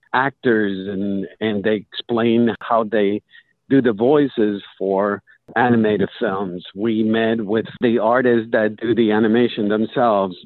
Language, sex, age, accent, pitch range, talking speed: English, male, 50-69, American, 110-135 Hz, 130 wpm